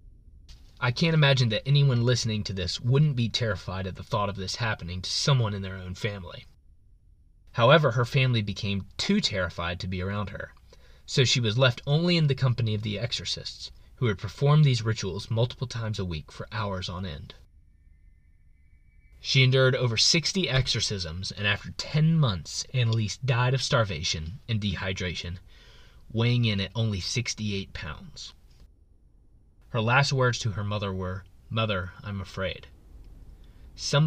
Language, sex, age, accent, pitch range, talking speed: English, male, 20-39, American, 90-120 Hz, 155 wpm